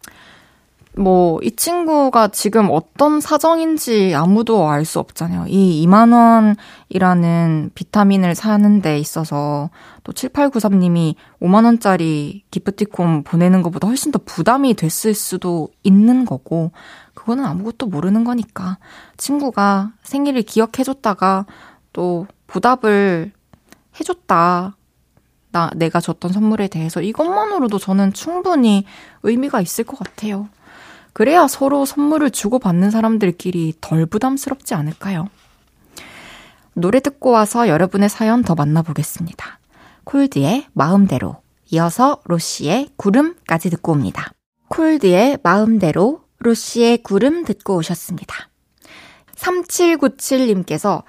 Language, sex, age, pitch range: Korean, female, 20-39, 175-255 Hz